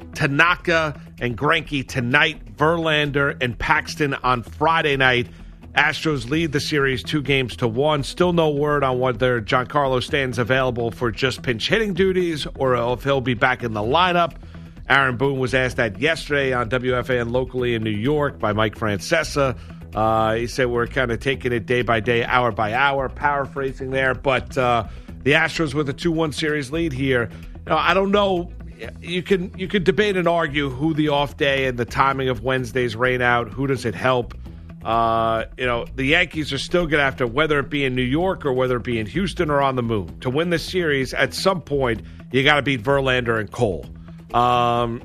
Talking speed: 195 wpm